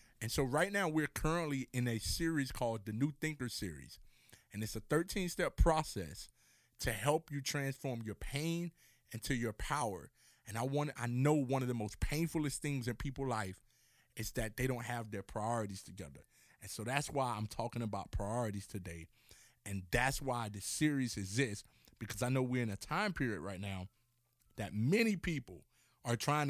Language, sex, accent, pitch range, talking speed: English, male, American, 115-150 Hz, 180 wpm